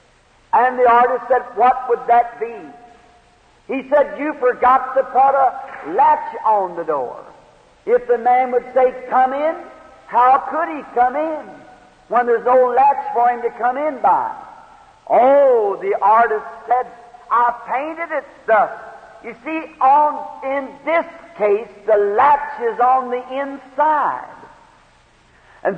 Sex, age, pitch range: male, 50-69, 230-305 Hz